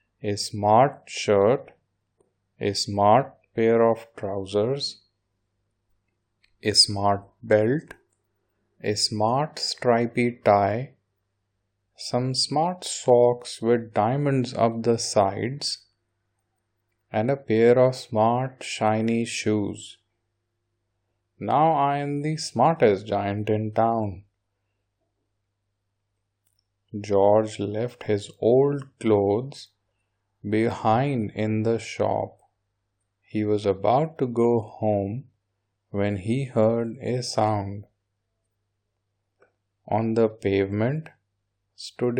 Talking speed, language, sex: 90 wpm, English, male